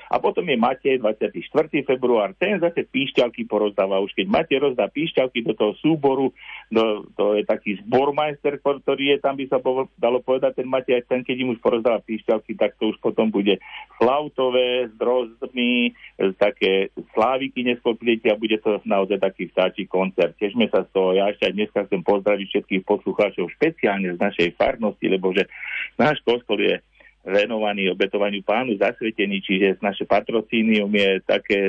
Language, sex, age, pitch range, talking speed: Slovak, male, 50-69, 100-125 Hz, 165 wpm